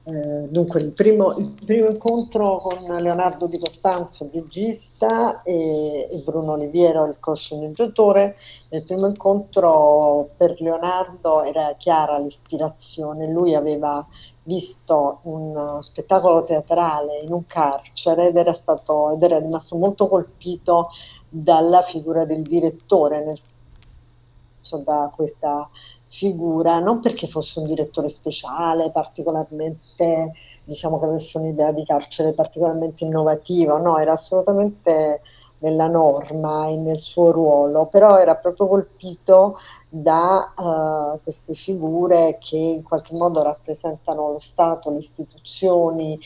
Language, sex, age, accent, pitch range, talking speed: Italian, female, 50-69, native, 150-175 Hz, 120 wpm